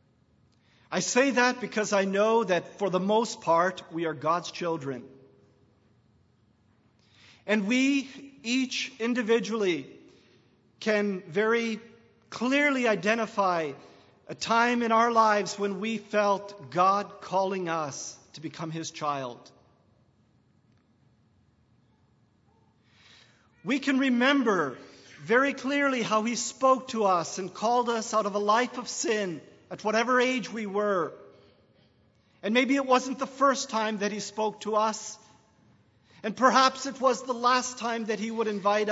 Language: English